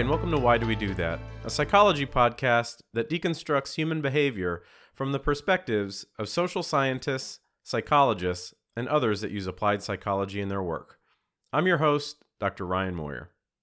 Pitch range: 105-150 Hz